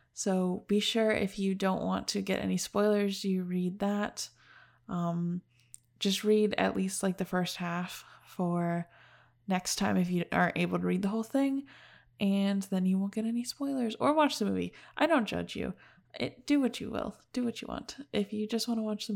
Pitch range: 185-230 Hz